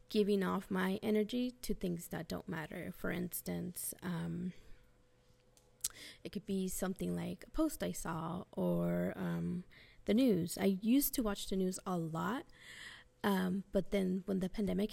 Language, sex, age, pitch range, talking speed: English, female, 20-39, 175-210 Hz, 155 wpm